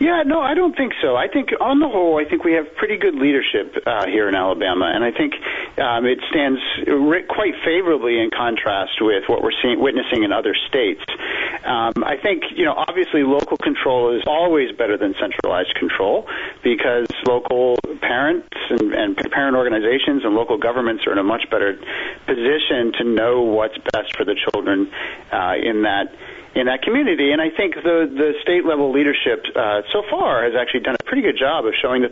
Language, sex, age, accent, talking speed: English, male, 40-59, American, 190 wpm